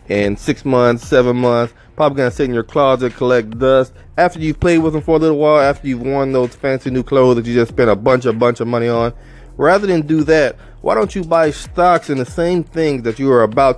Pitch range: 115-155 Hz